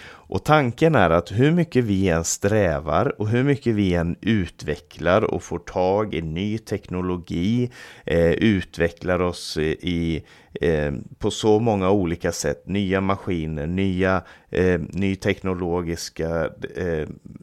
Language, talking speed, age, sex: Swedish, 110 wpm, 30-49, male